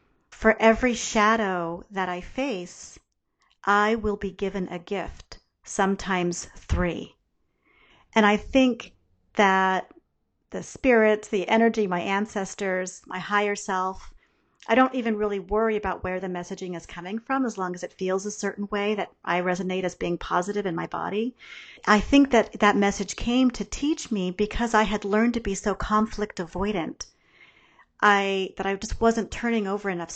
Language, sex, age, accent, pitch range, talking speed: English, female, 40-59, American, 190-230 Hz, 165 wpm